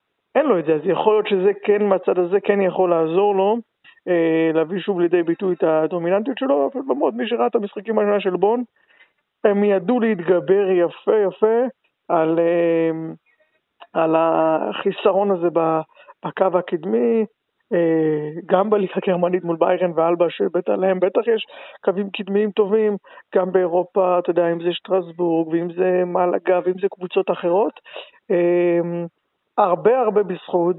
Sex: male